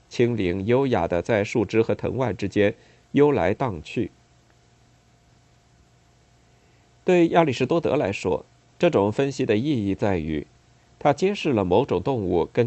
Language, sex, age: Chinese, male, 50-69